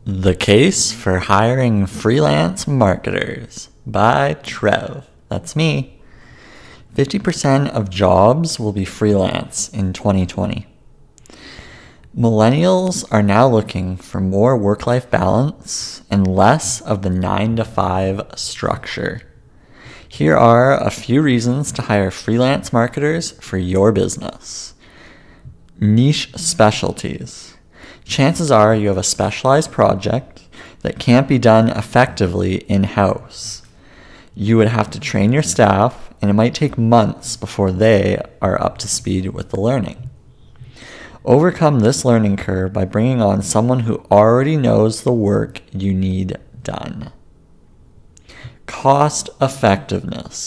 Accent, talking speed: American, 120 wpm